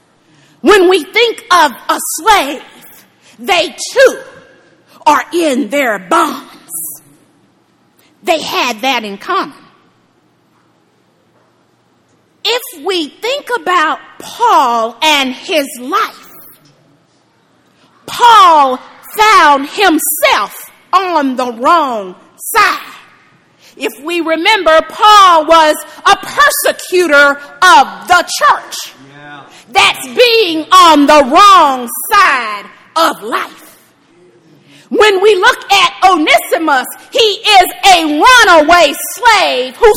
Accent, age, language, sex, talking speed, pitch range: American, 40-59, English, female, 90 wpm, 285-405 Hz